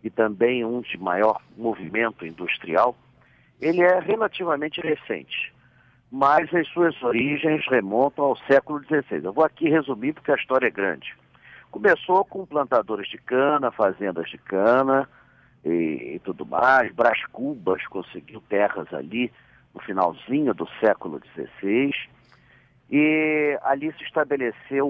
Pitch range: 120-150 Hz